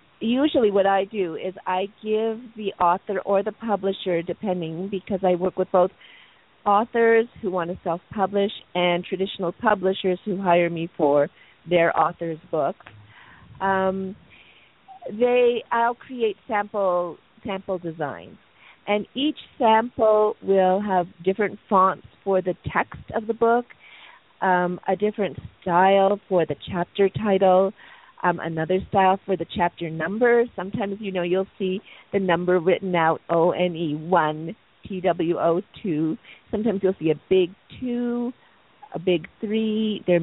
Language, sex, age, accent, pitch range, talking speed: English, female, 40-59, American, 175-210 Hz, 130 wpm